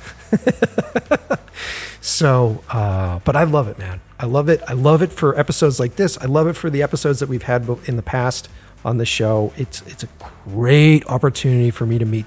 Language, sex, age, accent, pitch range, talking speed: English, male, 40-59, American, 110-140 Hz, 200 wpm